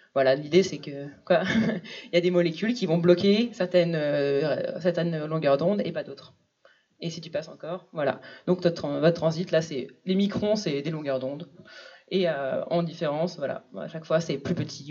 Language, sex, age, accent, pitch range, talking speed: French, female, 20-39, French, 160-205 Hz, 195 wpm